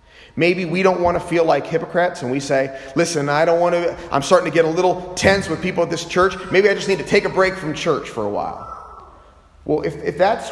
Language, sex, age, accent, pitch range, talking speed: English, male, 30-49, American, 125-185 Hz, 255 wpm